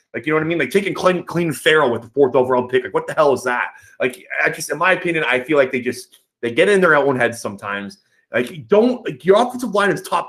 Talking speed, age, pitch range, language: 280 wpm, 20-39, 115-180 Hz, English